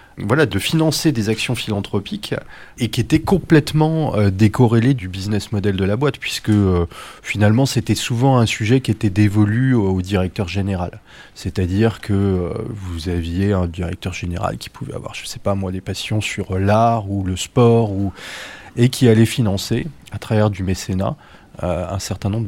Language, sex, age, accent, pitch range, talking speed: French, male, 30-49, French, 100-125 Hz, 175 wpm